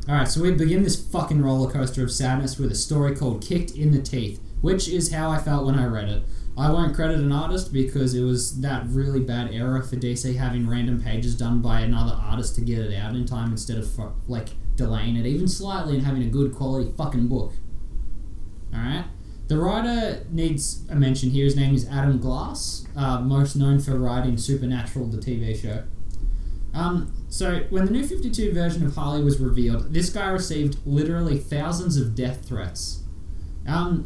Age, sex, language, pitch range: 20-39, male, English, 105-140 Hz